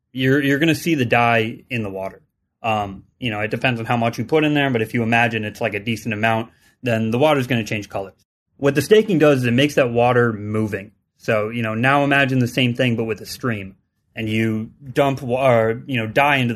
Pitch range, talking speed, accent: 110-130 Hz, 245 wpm, American